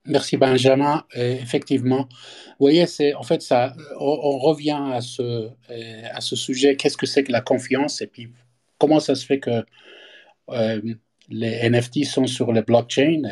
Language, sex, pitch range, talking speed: French, male, 115-140 Hz, 170 wpm